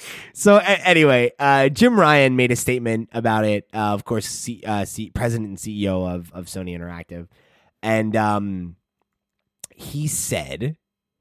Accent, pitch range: American, 100-130 Hz